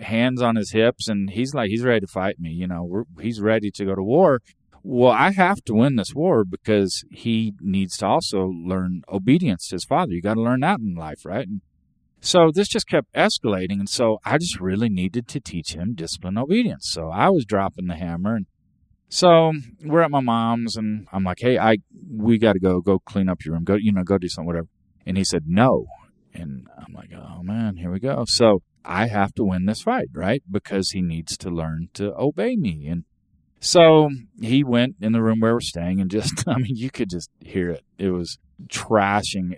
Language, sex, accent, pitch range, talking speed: English, male, American, 95-125 Hz, 220 wpm